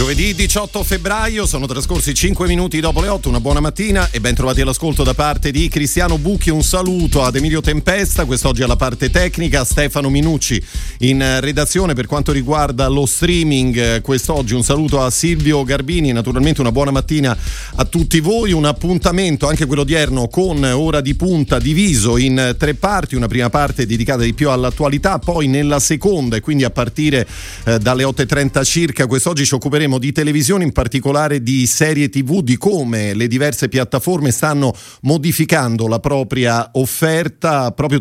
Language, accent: Italian, native